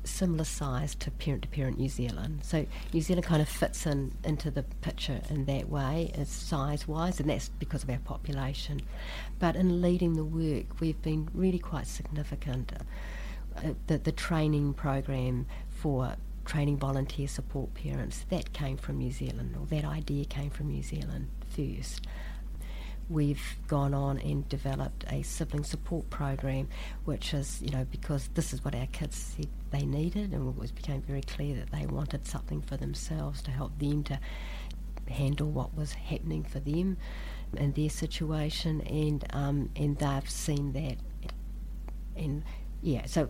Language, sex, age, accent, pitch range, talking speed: English, female, 50-69, Australian, 135-155 Hz, 160 wpm